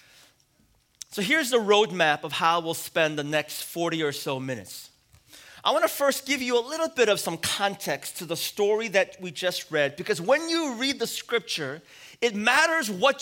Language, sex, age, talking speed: English, male, 30-49, 190 wpm